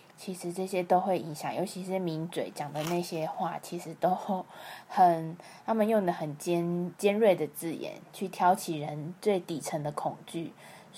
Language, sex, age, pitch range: Chinese, female, 20-39, 165-195 Hz